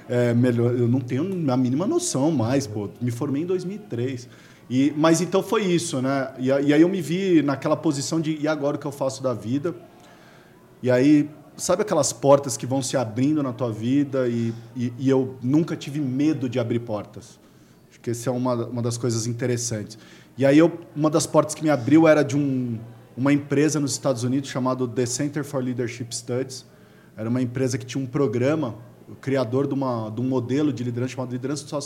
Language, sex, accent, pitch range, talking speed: Portuguese, male, Brazilian, 120-145 Hz, 205 wpm